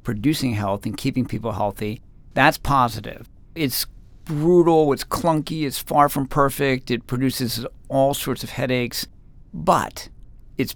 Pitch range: 115-140 Hz